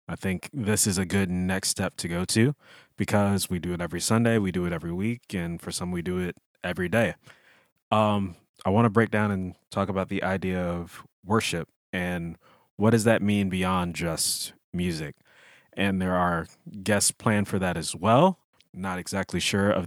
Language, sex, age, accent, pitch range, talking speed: English, male, 20-39, American, 90-110 Hz, 195 wpm